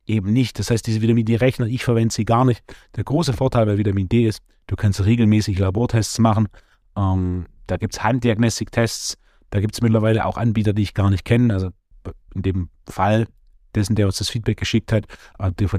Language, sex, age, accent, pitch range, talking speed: German, male, 30-49, German, 100-115 Hz, 200 wpm